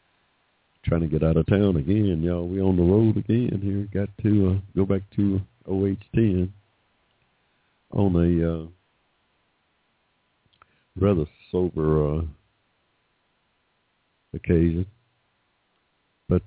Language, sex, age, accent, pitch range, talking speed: English, male, 60-79, American, 75-95 Hz, 105 wpm